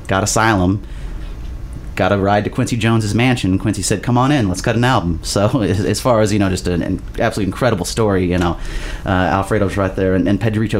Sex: male